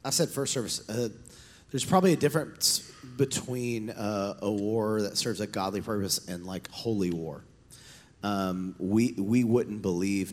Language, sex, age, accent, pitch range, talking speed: English, male, 30-49, American, 95-125 Hz, 155 wpm